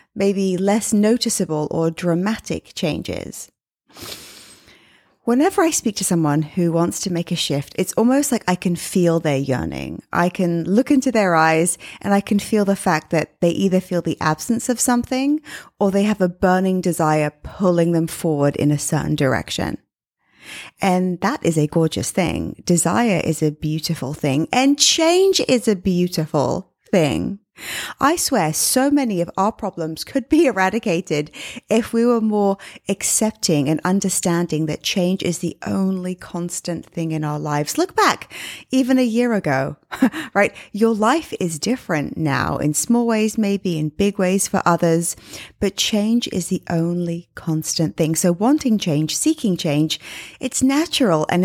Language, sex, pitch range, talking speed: English, female, 160-225 Hz, 160 wpm